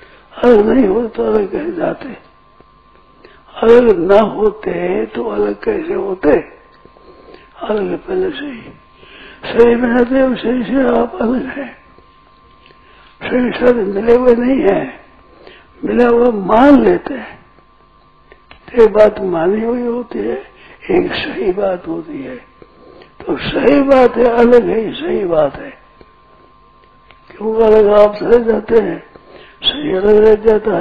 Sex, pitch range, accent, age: male, 205-270 Hz, native, 60-79